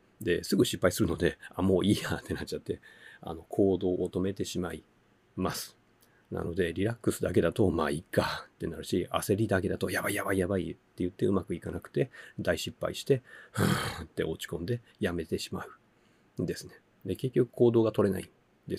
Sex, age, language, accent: male, 40-59, Japanese, native